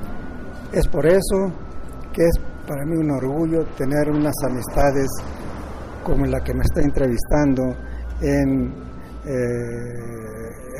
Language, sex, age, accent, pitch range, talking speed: Spanish, male, 50-69, Mexican, 125-155 Hz, 110 wpm